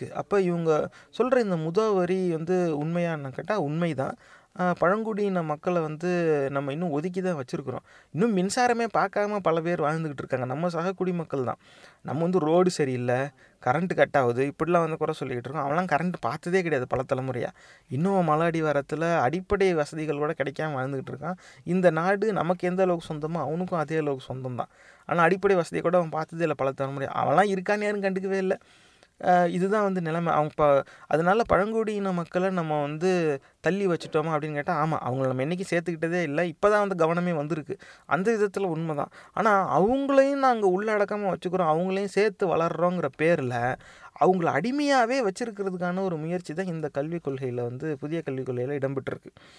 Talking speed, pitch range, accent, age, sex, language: 150 wpm, 150-185 Hz, native, 30-49, male, Tamil